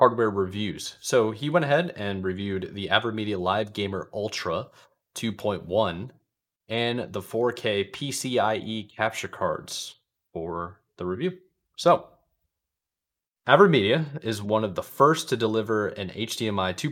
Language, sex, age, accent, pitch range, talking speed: English, male, 20-39, American, 95-120 Hz, 120 wpm